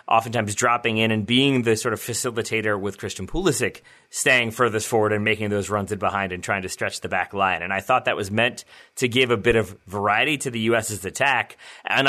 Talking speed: 225 wpm